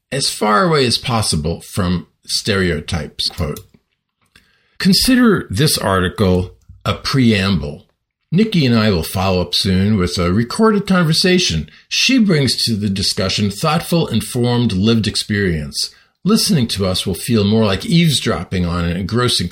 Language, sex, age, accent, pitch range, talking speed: English, male, 50-69, American, 95-130 Hz, 135 wpm